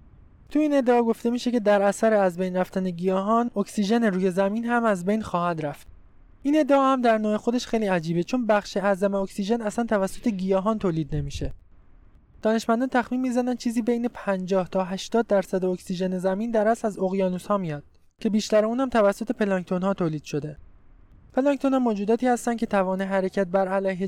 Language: Persian